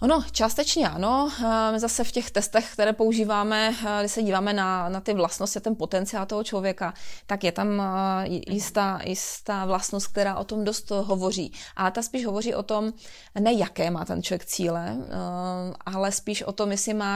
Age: 30-49